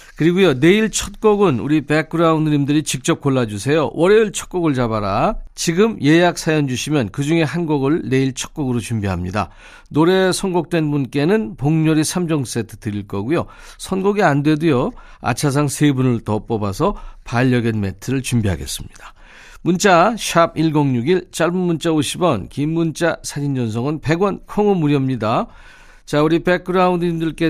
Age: 50-69